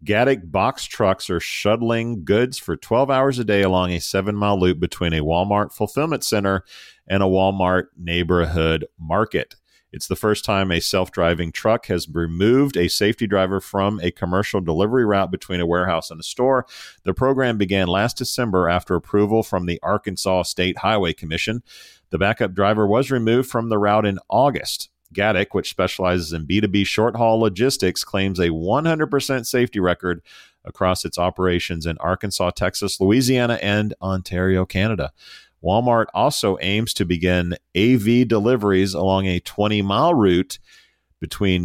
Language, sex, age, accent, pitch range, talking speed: English, male, 40-59, American, 90-110 Hz, 150 wpm